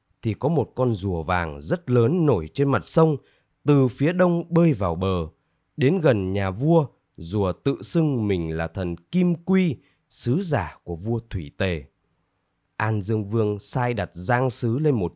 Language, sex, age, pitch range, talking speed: Vietnamese, male, 20-39, 95-155 Hz, 180 wpm